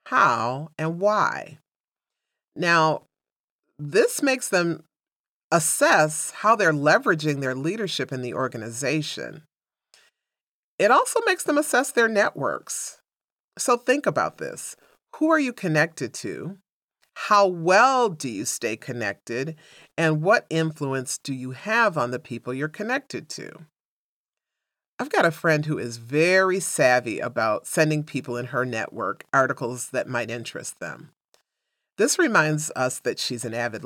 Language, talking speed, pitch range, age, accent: English, 135 wpm, 135-200 Hz, 40-59, American